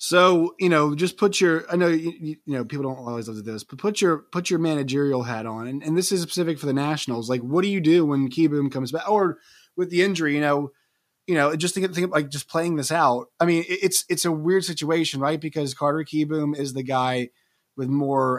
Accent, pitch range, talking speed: American, 125-165 Hz, 250 wpm